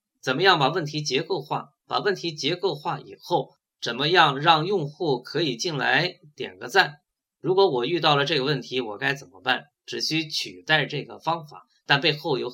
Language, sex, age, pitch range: Chinese, male, 20-39, 140-195 Hz